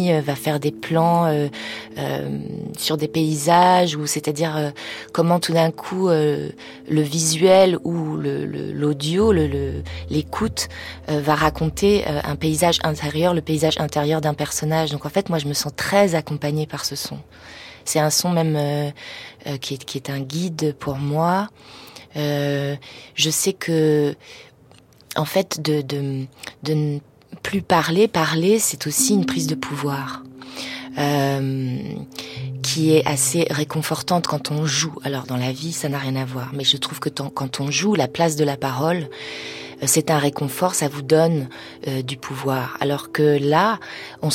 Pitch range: 140-165 Hz